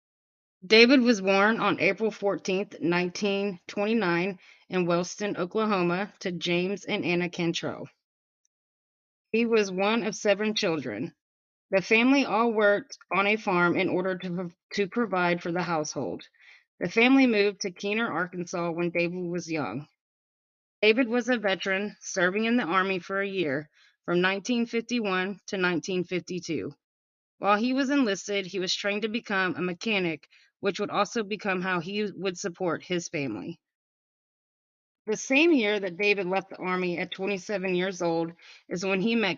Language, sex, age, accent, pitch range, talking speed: English, female, 20-39, American, 175-215 Hz, 150 wpm